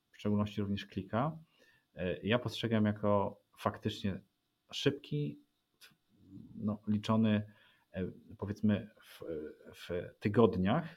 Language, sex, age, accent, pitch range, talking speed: Polish, male, 40-59, native, 95-115 Hz, 75 wpm